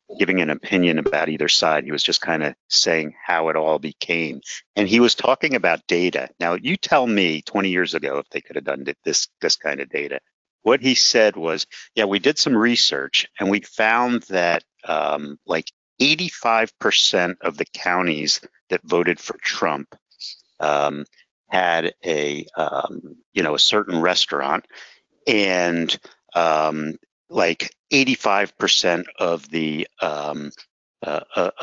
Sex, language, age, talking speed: male, English, 50-69, 150 wpm